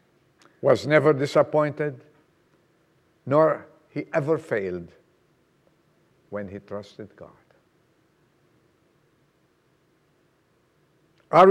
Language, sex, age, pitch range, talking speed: English, male, 60-79, 125-180 Hz, 65 wpm